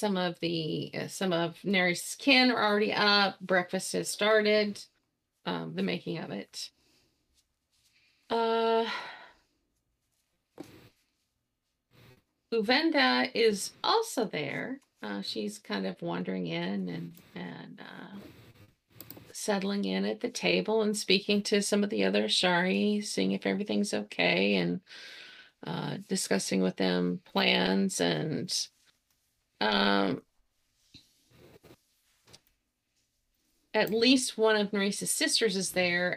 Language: English